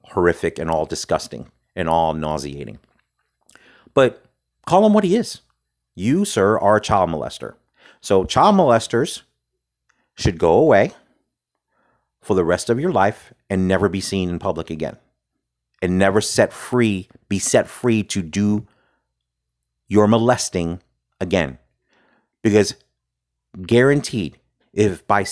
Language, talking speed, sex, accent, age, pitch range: English, 130 wpm, male, American, 40-59, 85-110 Hz